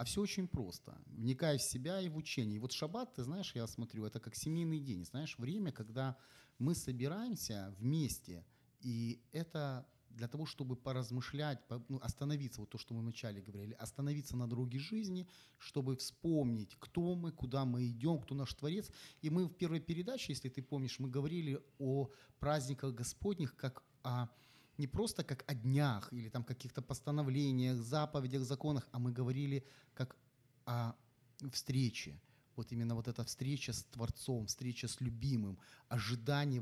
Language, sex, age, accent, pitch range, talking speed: Ukrainian, male, 30-49, native, 125-150 Hz, 155 wpm